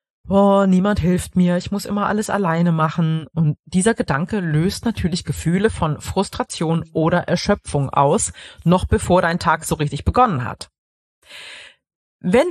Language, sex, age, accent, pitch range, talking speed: German, female, 30-49, German, 160-205 Hz, 145 wpm